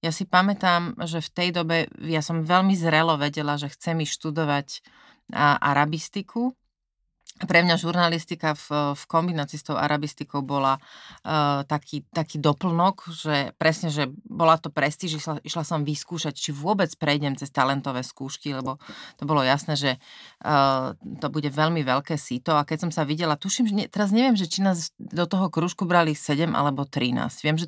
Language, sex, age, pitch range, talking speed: Slovak, female, 30-49, 140-170 Hz, 165 wpm